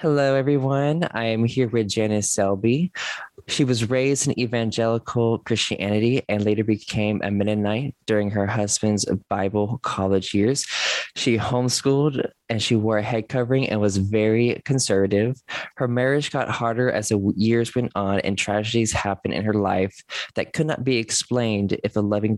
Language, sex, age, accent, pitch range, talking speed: English, male, 20-39, American, 105-125 Hz, 160 wpm